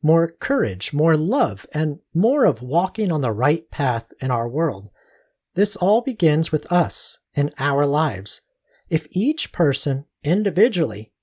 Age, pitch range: 40-59, 130-190 Hz